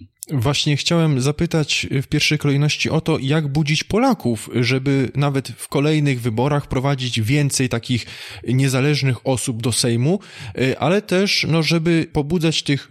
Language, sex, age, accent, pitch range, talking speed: Polish, male, 20-39, native, 125-170 Hz, 135 wpm